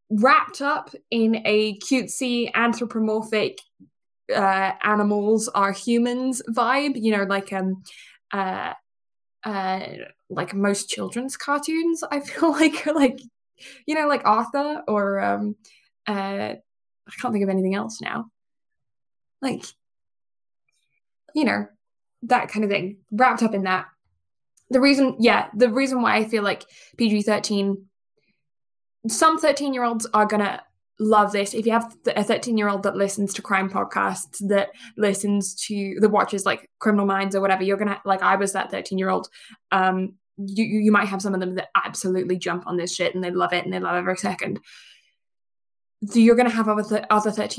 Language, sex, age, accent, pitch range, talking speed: English, female, 10-29, British, 195-235 Hz, 160 wpm